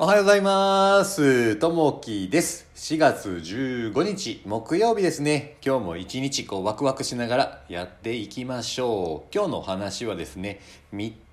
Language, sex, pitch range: Japanese, male, 95-145 Hz